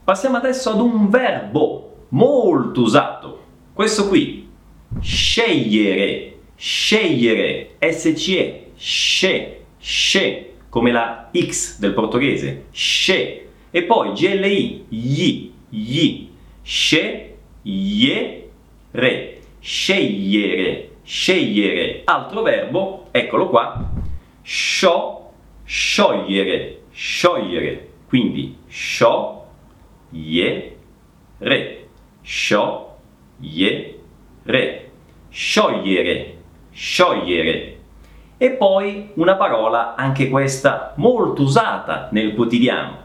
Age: 40-59